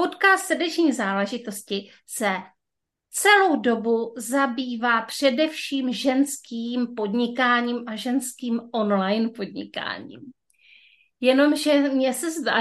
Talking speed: 85 wpm